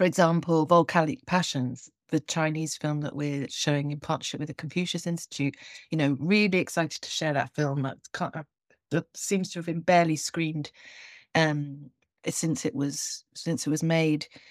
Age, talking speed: 40-59, 160 wpm